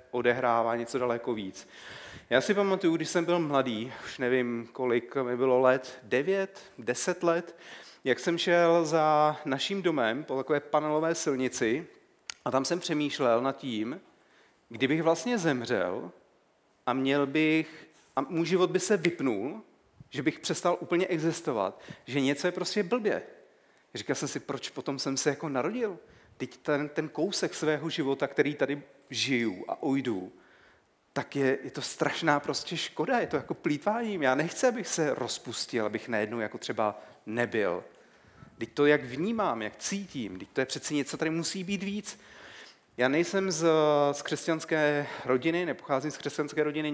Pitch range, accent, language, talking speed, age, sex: 130-165 Hz, native, Czech, 160 wpm, 40-59, male